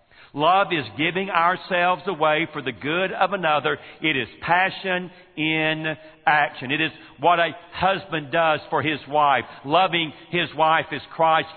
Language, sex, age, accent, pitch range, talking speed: English, male, 50-69, American, 130-155 Hz, 150 wpm